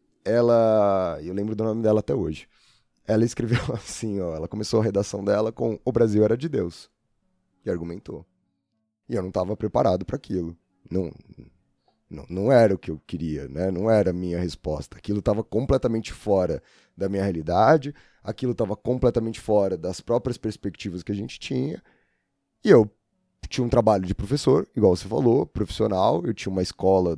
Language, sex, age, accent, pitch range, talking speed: Portuguese, male, 20-39, Brazilian, 95-120 Hz, 175 wpm